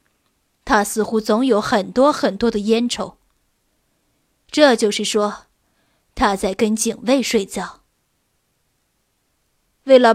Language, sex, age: Chinese, female, 20-39